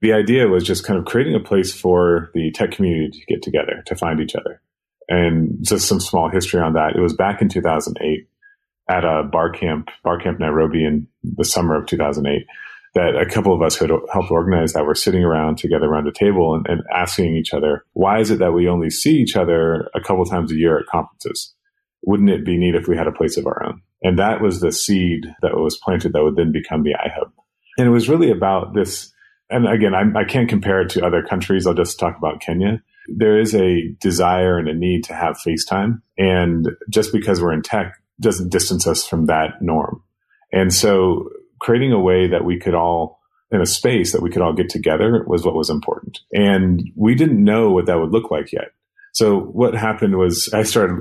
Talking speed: 220 wpm